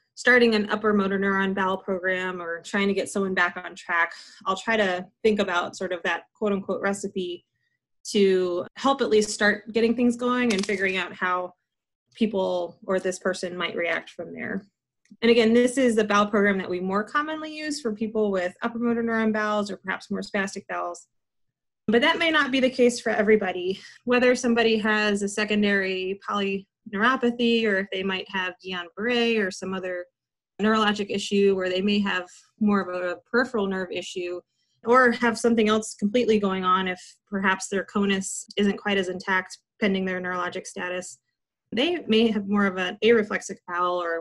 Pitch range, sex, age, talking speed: 185-220 Hz, female, 20-39, 185 wpm